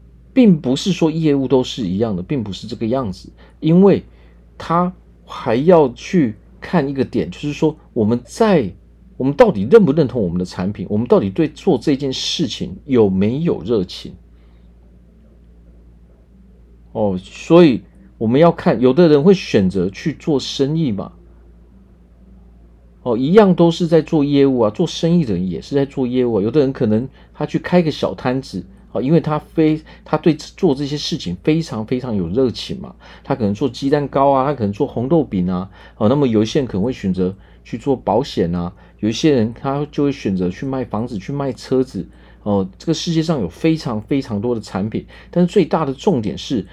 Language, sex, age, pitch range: Chinese, male, 40-59, 95-155 Hz